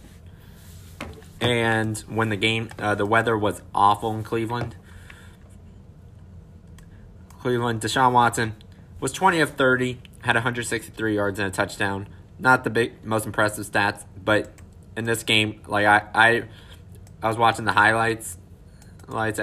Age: 20-39